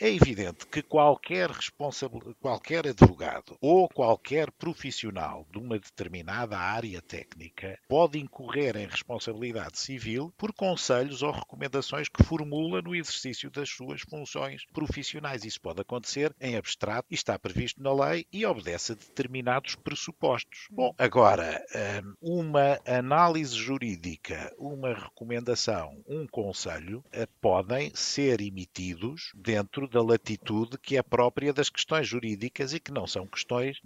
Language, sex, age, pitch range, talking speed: Portuguese, male, 50-69, 110-145 Hz, 130 wpm